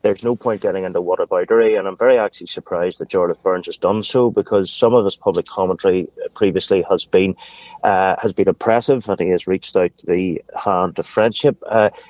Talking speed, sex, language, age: 200 wpm, male, English, 30-49